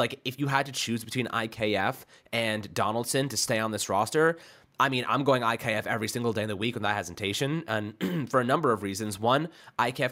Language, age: English, 20-39